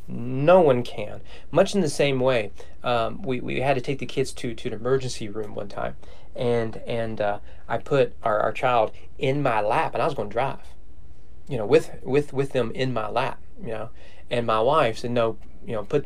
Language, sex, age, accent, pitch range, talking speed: English, male, 30-49, American, 110-145 Hz, 215 wpm